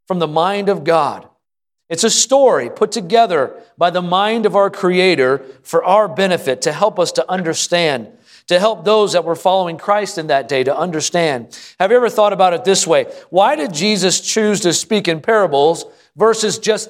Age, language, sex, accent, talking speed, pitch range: 40-59, English, male, American, 190 wpm, 160-215 Hz